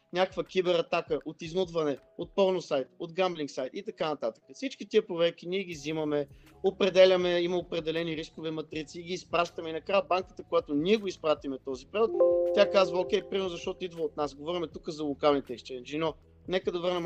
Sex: male